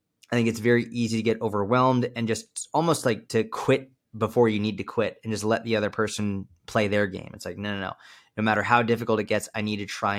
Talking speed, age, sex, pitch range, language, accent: 255 wpm, 20-39, male, 105-120 Hz, English, American